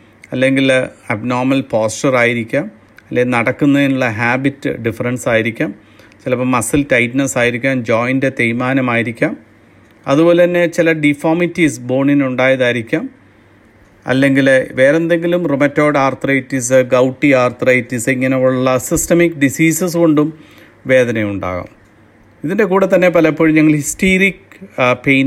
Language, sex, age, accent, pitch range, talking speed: Malayalam, male, 40-59, native, 125-160 Hz, 95 wpm